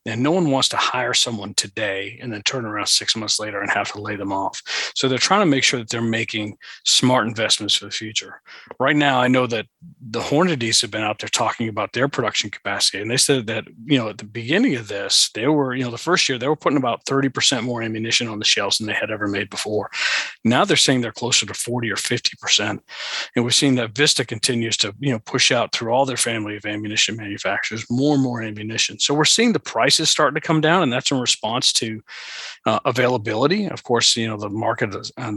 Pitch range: 110-140 Hz